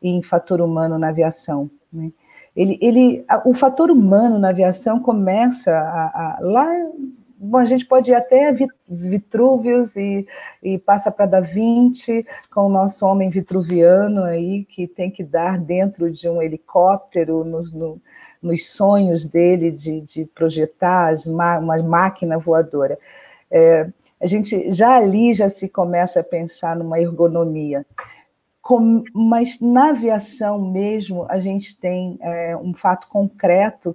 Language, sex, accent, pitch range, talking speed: Portuguese, female, Brazilian, 170-215 Hz, 135 wpm